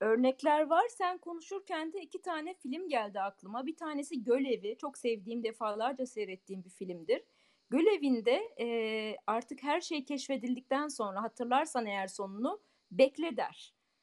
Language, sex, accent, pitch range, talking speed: Turkish, female, native, 225-315 Hz, 135 wpm